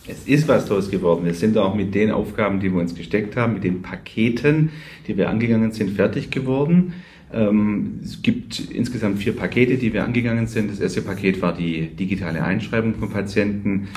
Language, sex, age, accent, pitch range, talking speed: German, male, 40-59, German, 90-115 Hz, 185 wpm